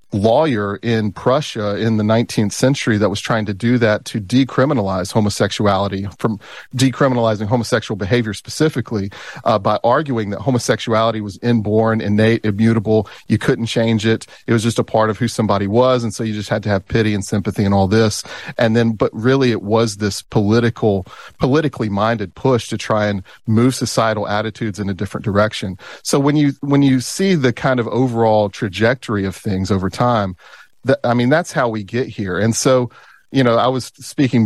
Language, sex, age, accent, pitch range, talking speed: English, male, 40-59, American, 105-125 Hz, 185 wpm